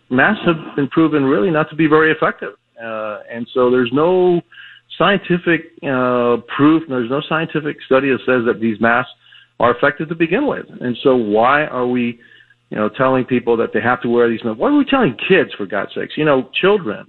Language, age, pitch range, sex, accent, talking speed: English, 50-69, 110-135 Hz, male, American, 210 wpm